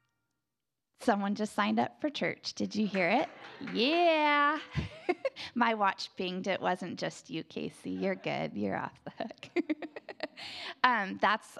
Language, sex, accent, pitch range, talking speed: English, female, American, 205-310 Hz, 140 wpm